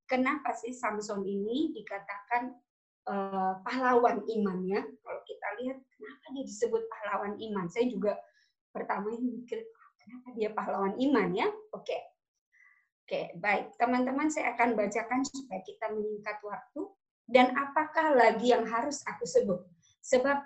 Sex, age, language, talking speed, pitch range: male, 20-39, Indonesian, 140 wpm, 210-265 Hz